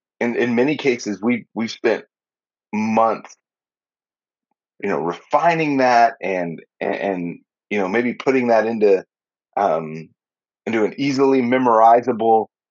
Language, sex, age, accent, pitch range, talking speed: English, male, 30-49, American, 105-135 Hz, 125 wpm